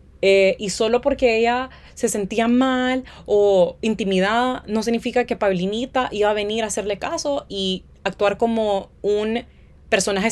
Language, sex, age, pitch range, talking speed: Spanish, female, 20-39, 165-220 Hz, 145 wpm